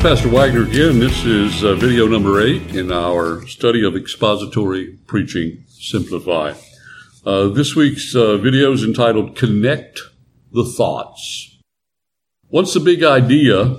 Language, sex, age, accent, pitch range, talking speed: English, male, 60-79, American, 105-140 Hz, 130 wpm